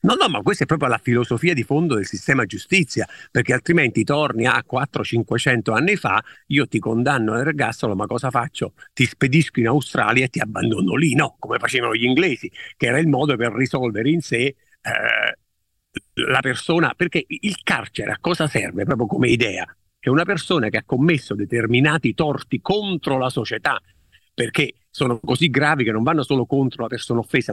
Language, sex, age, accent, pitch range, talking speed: Italian, male, 50-69, native, 115-150 Hz, 185 wpm